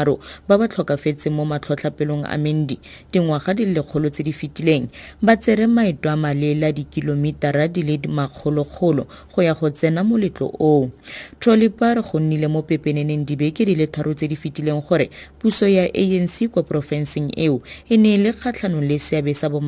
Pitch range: 145-175 Hz